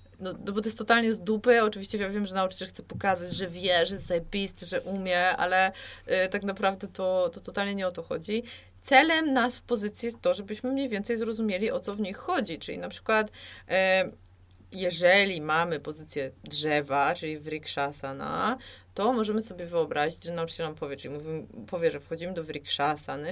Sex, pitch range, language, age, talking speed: female, 165-215 Hz, Polish, 20-39, 185 wpm